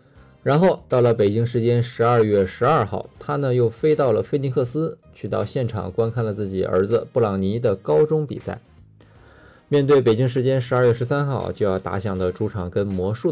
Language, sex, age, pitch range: Chinese, male, 20-39, 95-130 Hz